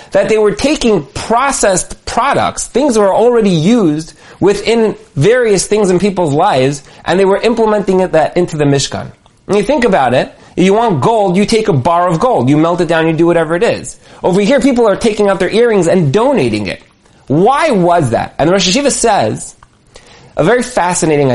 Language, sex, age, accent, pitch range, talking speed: English, male, 30-49, American, 160-220 Hz, 200 wpm